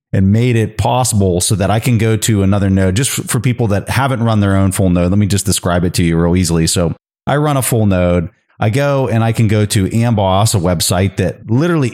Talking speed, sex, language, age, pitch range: 245 wpm, male, English, 30-49, 90-120 Hz